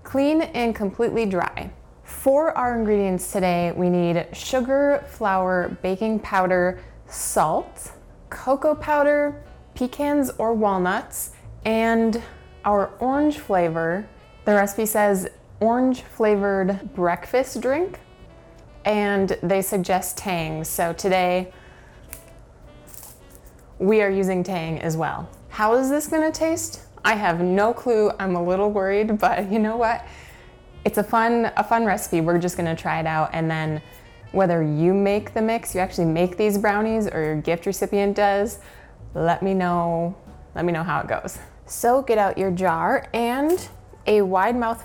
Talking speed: 140 wpm